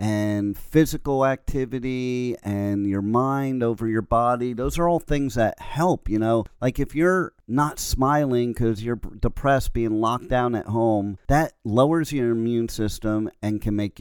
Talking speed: 165 wpm